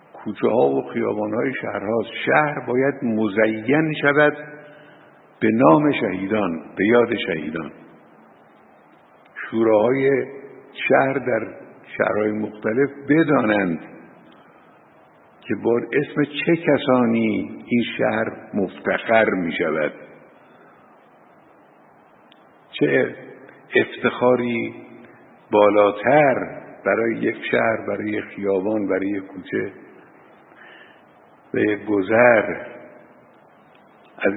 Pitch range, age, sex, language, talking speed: 100-120 Hz, 60-79, male, Persian, 80 wpm